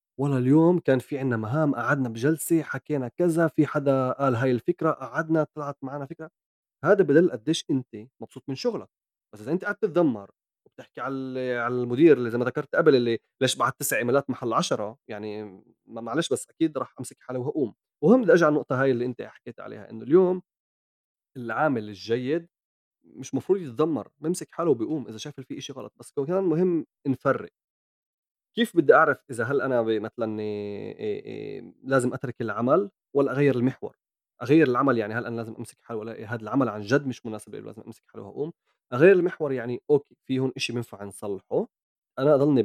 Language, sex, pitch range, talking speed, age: English, male, 120-155 Hz, 175 wpm, 30-49